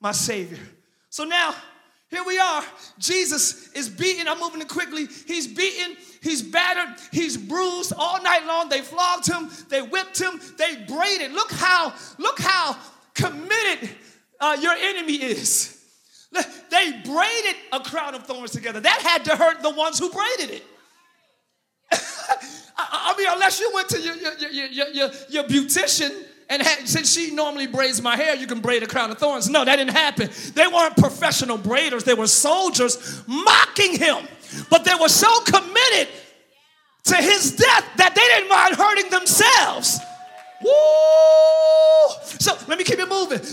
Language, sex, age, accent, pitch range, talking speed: English, male, 30-49, American, 295-365 Hz, 165 wpm